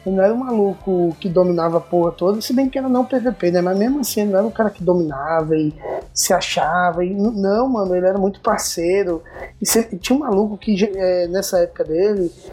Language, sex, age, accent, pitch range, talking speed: Portuguese, male, 20-39, Brazilian, 180-210 Hz, 220 wpm